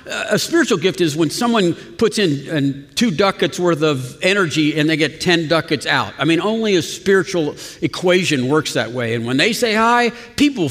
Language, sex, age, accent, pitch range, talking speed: English, male, 50-69, American, 150-200 Hz, 190 wpm